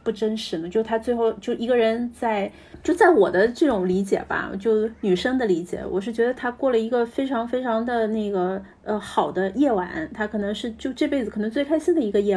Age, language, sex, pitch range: 30-49, Chinese, female, 195-245 Hz